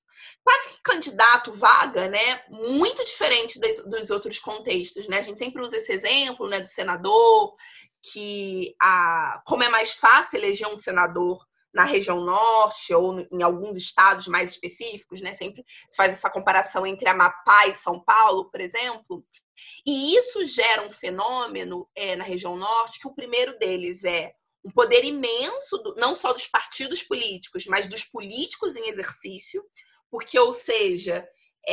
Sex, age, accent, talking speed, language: female, 20-39, Brazilian, 155 wpm, English